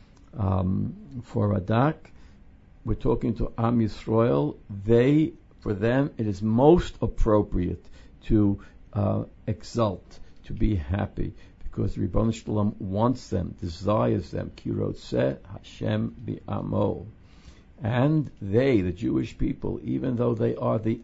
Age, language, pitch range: 60-79, English, 95-115 Hz